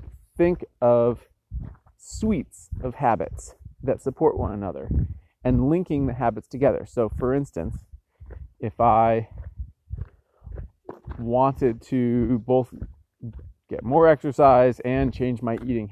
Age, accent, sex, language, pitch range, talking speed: 30-49, American, male, English, 95-125 Hz, 110 wpm